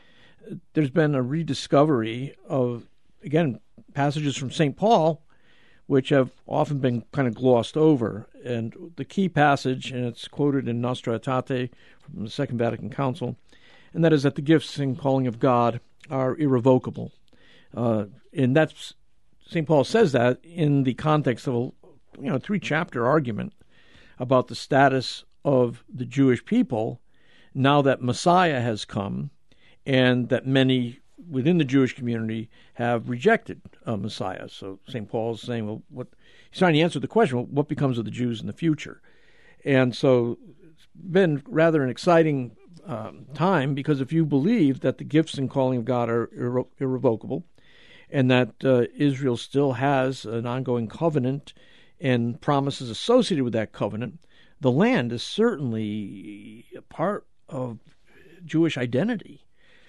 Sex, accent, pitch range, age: male, American, 120-155 Hz, 50-69